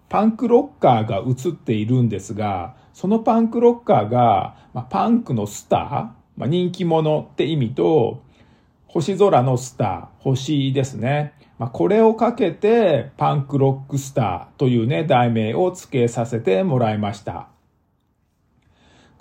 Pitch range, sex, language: 120-190 Hz, male, Japanese